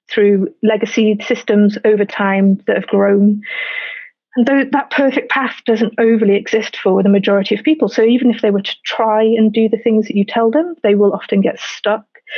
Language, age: English, 30-49